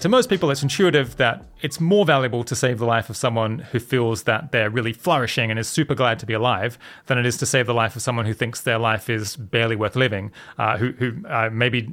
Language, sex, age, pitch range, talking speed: English, male, 30-49, 115-140 Hz, 250 wpm